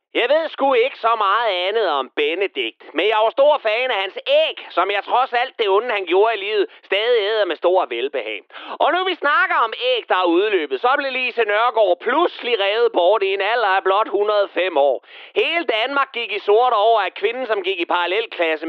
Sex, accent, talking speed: male, native, 215 wpm